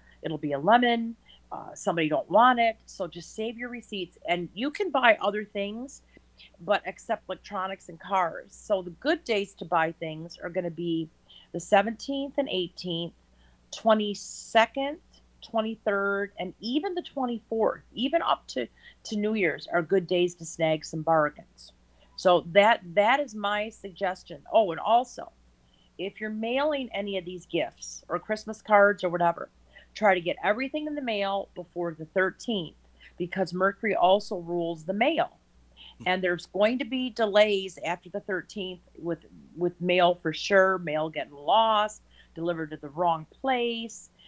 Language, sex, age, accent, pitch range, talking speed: English, female, 40-59, American, 170-220 Hz, 160 wpm